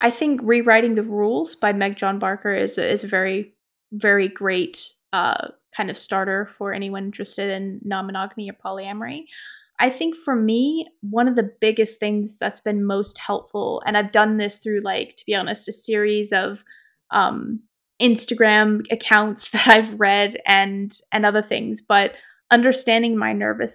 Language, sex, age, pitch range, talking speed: English, female, 20-39, 205-230 Hz, 165 wpm